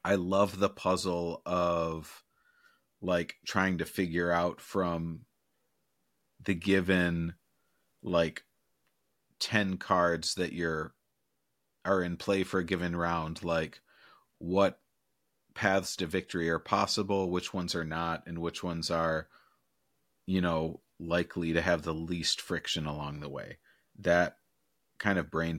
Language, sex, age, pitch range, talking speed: English, male, 30-49, 80-95 Hz, 130 wpm